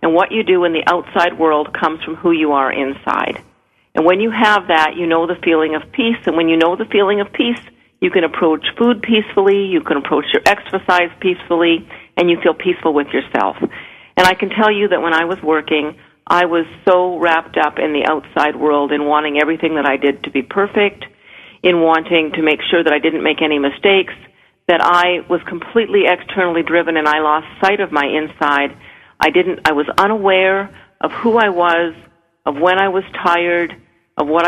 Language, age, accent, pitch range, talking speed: English, 50-69, American, 155-185 Hz, 205 wpm